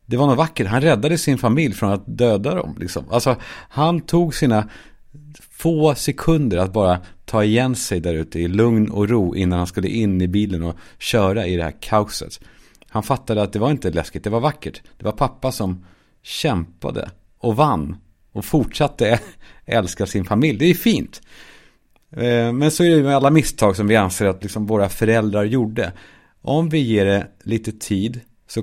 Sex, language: male, Swedish